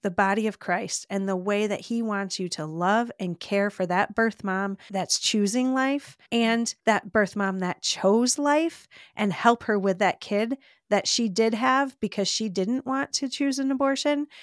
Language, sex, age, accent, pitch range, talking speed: English, female, 30-49, American, 180-215 Hz, 195 wpm